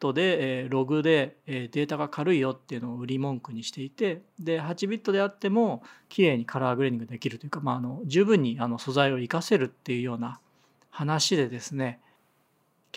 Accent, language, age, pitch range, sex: native, Japanese, 40-59, 130-175 Hz, male